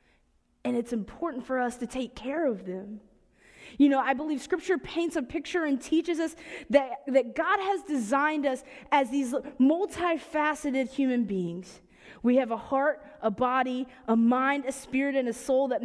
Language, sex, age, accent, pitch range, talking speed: English, female, 20-39, American, 245-295 Hz, 175 wpm